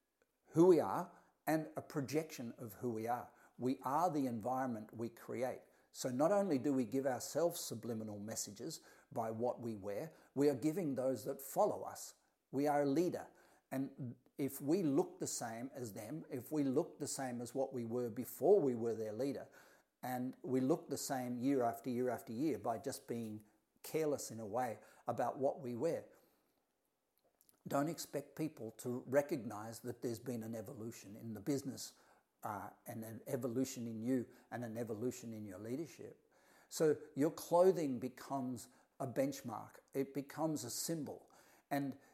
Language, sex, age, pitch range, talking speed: English, male, 50-69, 120-145 Hz, 170 wpm